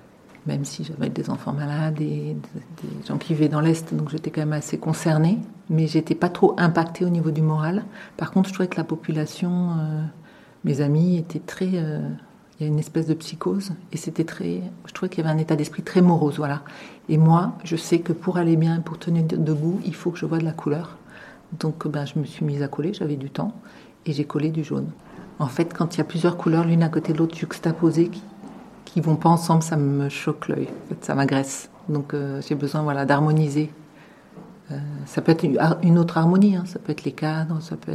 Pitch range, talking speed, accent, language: 155-180 Hz, 230 wpm, French, French